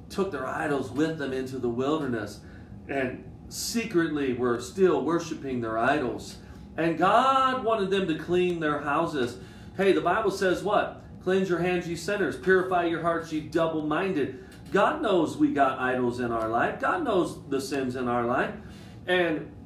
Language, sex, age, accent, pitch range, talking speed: English, male, 40-59, American, 140-190 Hz, 165 wpm